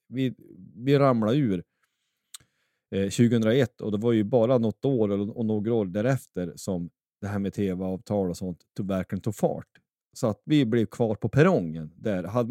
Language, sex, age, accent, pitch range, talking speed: Swedish, male, 30-49, native, 95-120 Hz, 180 wpm